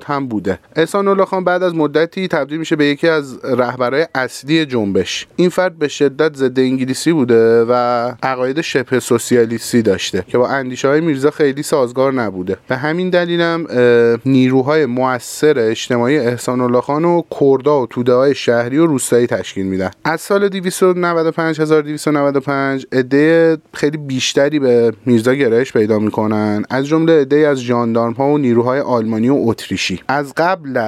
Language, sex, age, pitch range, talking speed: Persian, male, 30-49, 120-150 Hz, 155 wpm